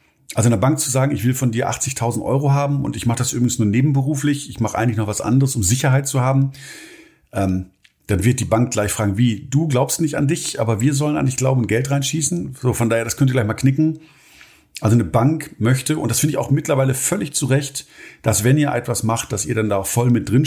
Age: 50-69